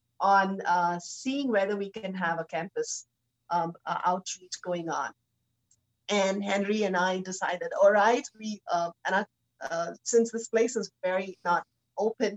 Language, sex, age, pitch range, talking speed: English, female, 30-49, 165-205 Hz, 155 wpm